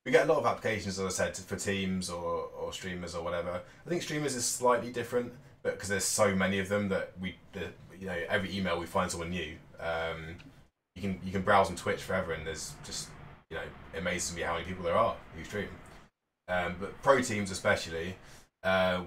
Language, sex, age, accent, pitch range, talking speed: English, male, 20-39, British, 90-105 Hz, 215 wpm